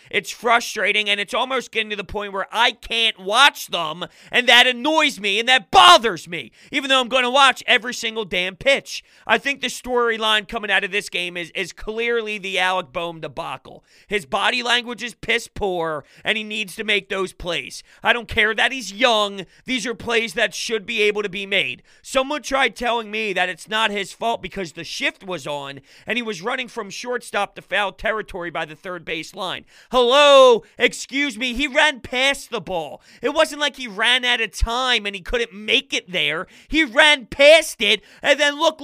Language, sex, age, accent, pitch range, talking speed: English, male, 30-49, American, 200-260 Hz, 205 wpm